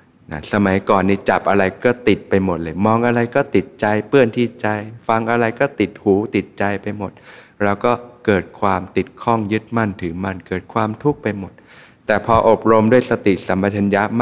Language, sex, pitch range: Thai, male, 95-115 Hz